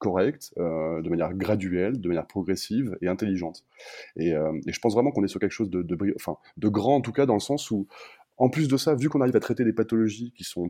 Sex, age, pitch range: male, 20-39, 95-120 Hz